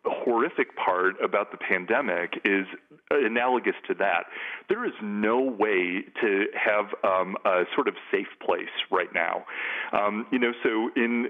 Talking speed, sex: 150 wpm, male